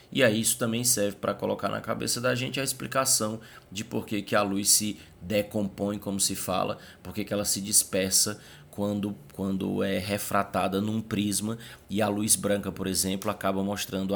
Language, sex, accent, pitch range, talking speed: Portuguese, male, Brazilian, 95-115 Hz, 180 wpm